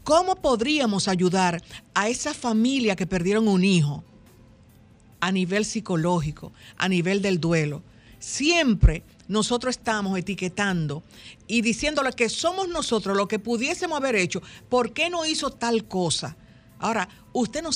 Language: Spanish